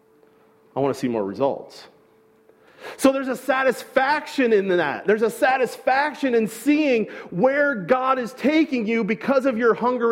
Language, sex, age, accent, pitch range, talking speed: English, male, 40-59, American, 170-245 Hz, 155 wpm